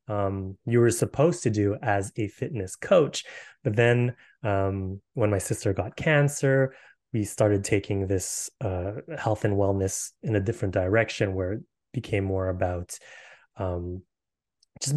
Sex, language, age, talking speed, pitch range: male, English, 20-39, 150 wpm, 100-120 Hz